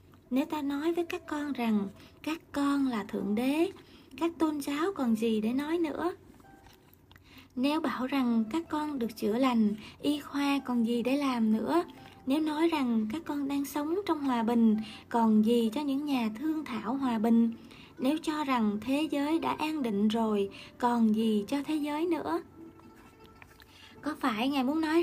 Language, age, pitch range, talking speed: Vietnamese, 20-39, 235-315 Hz, 175 wpm